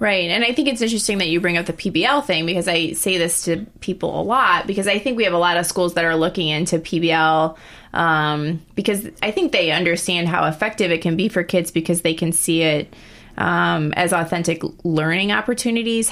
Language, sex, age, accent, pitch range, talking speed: English, female, 20-39, American, 165-195 Hz, 215 wpm